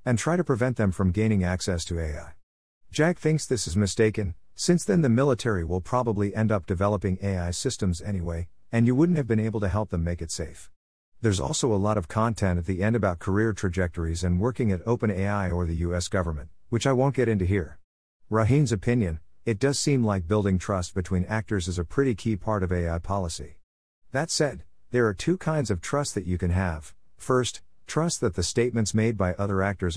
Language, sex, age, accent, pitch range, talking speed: English, male, 50-69, American, 90-115 Hz, 210 wpm